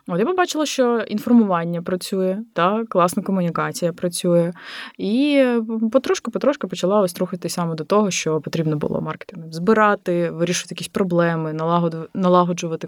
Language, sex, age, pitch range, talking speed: Ukrainian, female, 20-39, 160-210 Hz, 120 wpm